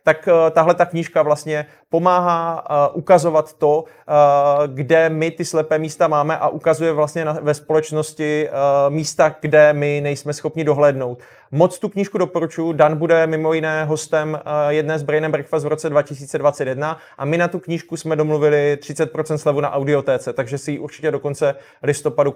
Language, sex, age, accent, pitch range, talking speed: Czech, male, 20-39, native, 150-170 Hz, 165 wpm